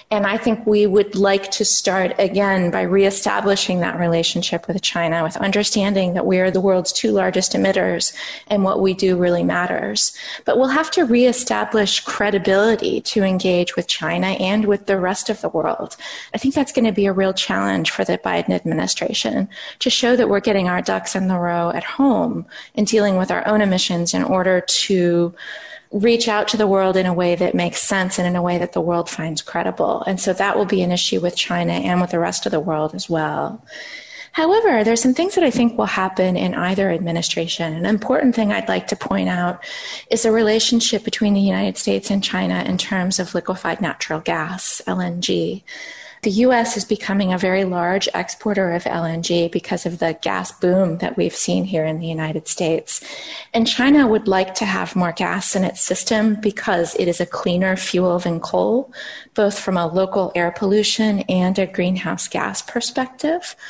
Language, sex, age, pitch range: English, female, 30-49, 175-220 Hz